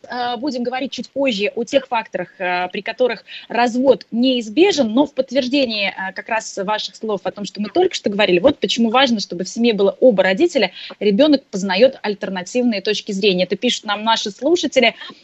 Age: 20-39